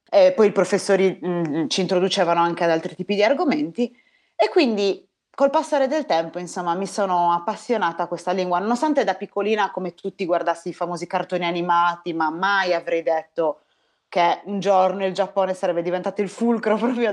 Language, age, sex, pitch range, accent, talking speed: Italian, 30-49, female, 175-225 Hz, native, 175 wpm